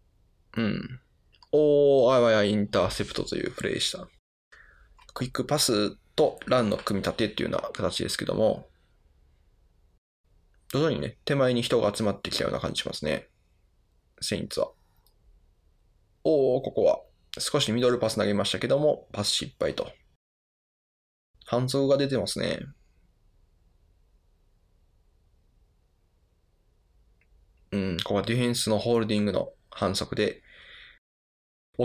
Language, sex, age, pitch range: Japanese, male, 20-39, 85-110 Hz